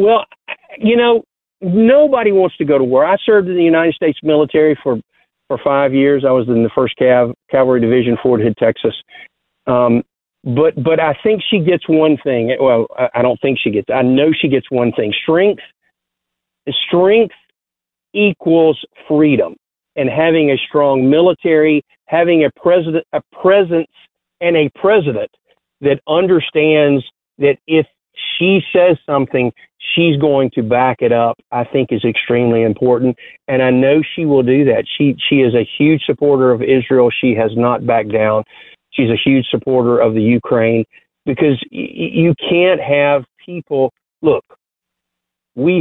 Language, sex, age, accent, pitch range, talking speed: English, male, 50-69, American, 120-165 Hz, 160 wpm